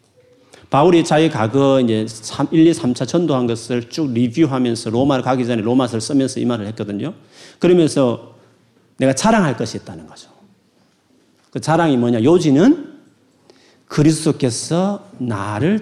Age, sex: 40-59, male